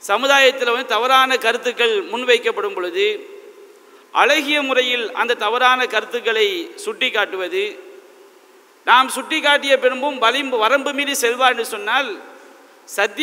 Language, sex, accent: English, male, Indian